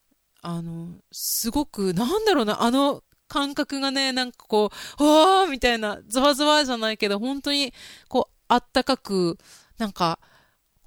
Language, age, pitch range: Japanese, 20-39, 185-270 Hz